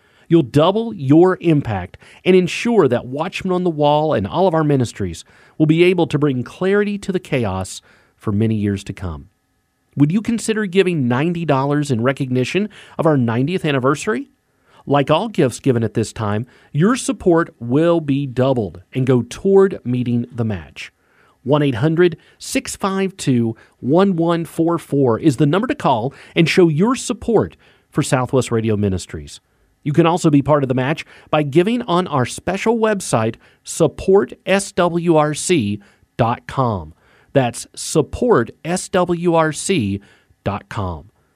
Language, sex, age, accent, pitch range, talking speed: English, male, 40-59, American, 120-185 Hz, 130 wpm